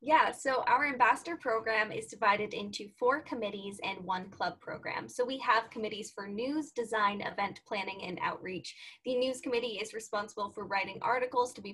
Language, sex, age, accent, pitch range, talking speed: English, female, 10-29, American, 205-245 Hz, 180 wpm